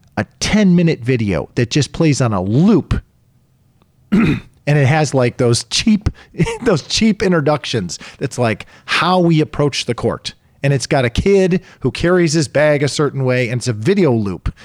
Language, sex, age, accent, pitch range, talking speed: English, male, 40-59, American, 115-160 Hz, 175 wpm